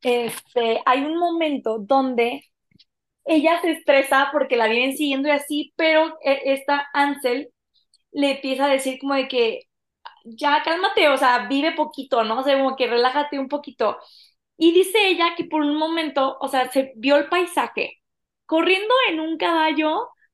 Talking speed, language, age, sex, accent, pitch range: 165 wpm, Spanish, 20-39, female, Mexican, 245-310 Hz